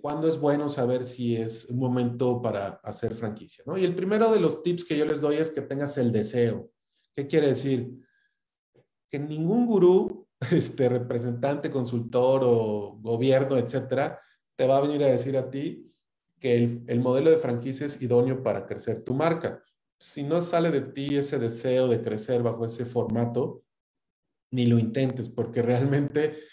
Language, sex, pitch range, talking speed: Spanish, male, 115-145 Hz, 170 wpm